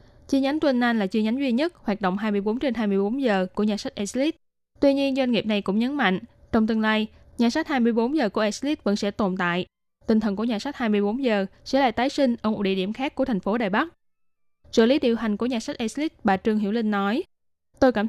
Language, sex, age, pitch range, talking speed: Vietnamese, female, 10-29, 200-260 Hz, 250 wpm